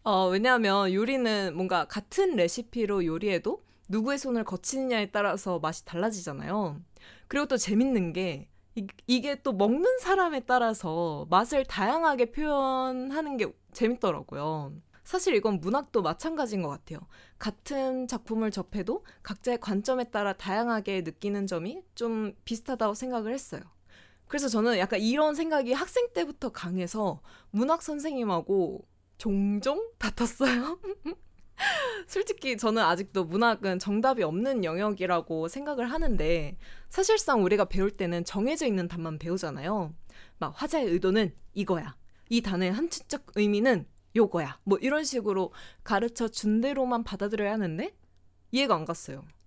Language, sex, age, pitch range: Korean, female, 20-39, 190-270 Hz